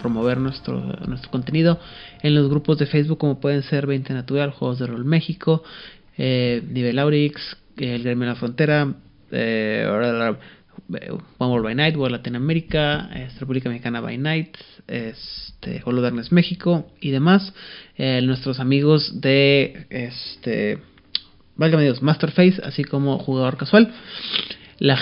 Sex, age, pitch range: male, 30-49, 125-155 Hz